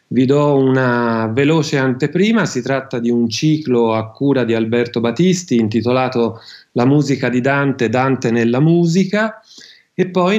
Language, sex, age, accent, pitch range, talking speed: Italian, male, 40-59, native, 120-155 Hz, 145 wpm